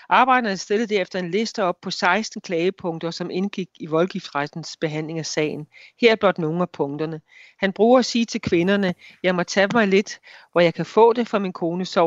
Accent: native